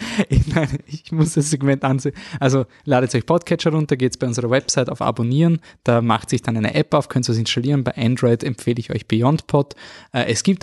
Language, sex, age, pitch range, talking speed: German, male, 20-39, 115-140 Hz, 210 wpm